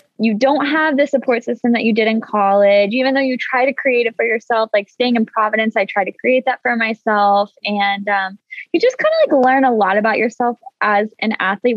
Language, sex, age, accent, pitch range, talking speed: English, female, 10-29, American, 205-255 Hz, 235 wpm